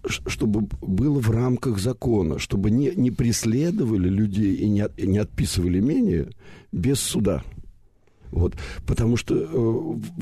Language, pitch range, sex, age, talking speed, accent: Russian, 95-125 Hz, male, 60-79, 130 wpm, native